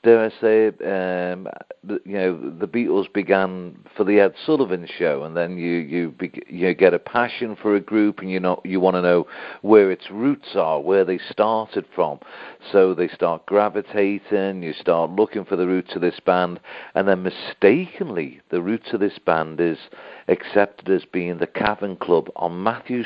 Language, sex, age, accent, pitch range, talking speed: English, male, 50-69, British, 85-105 Hz, 185 wpm